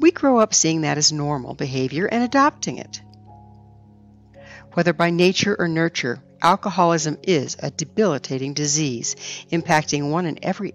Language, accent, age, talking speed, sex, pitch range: English, American, 60-79, 140 wpm, female, 125-190 Hz